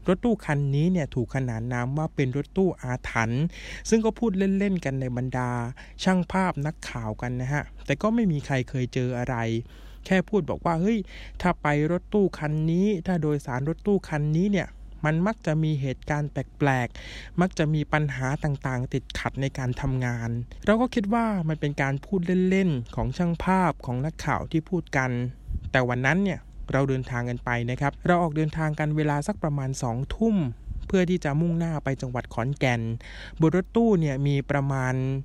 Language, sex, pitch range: English, male, 125-170 Hz